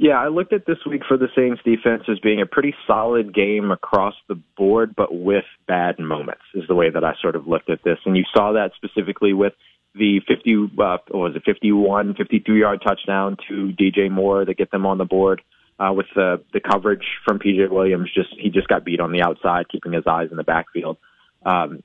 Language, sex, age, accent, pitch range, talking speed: English, male, 20-39, American, 90-110 Hz, 220 wpm